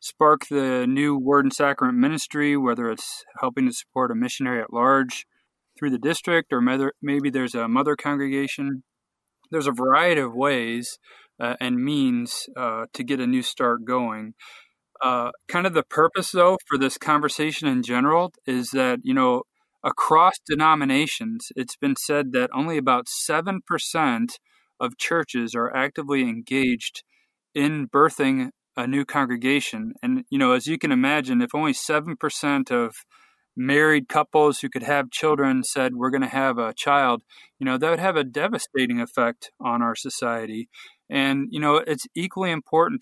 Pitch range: 130-165 Hz